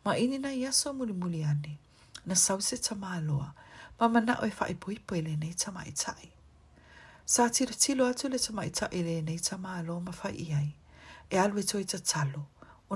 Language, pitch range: English, 155-210 Hz